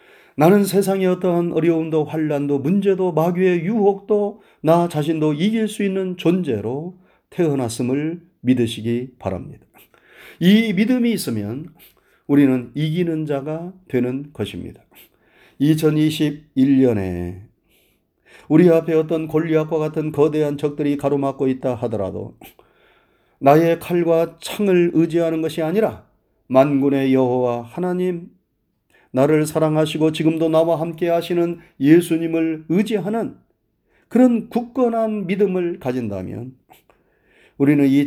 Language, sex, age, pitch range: Korean, male, 40-59, 130-170 Hz